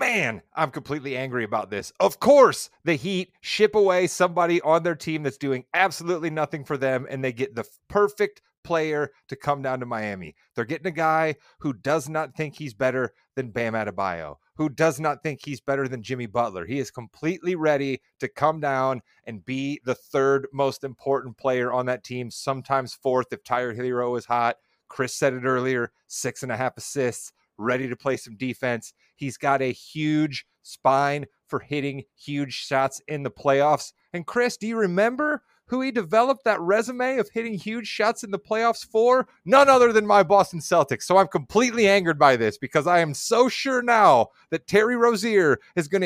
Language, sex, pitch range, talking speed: English, male, 130-200 Hz, 190 wpm